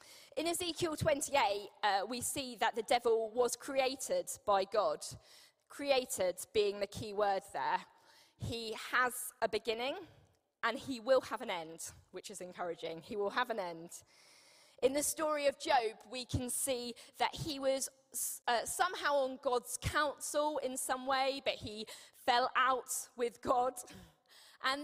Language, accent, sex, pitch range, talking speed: English, British, female, 215-275 Hz, 150 wpm